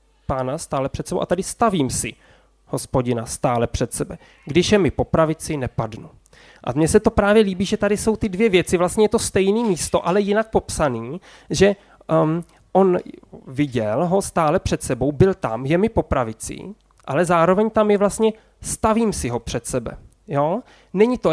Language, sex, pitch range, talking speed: Czech, male, 150-200 Hz, 175 wpm